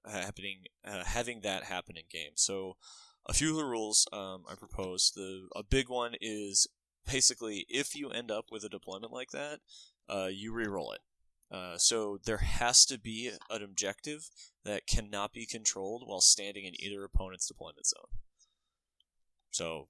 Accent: American